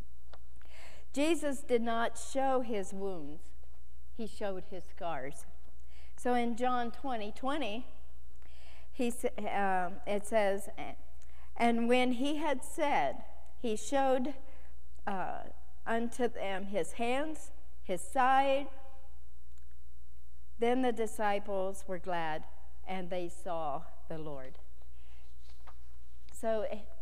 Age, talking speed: 50-69, 95 wpm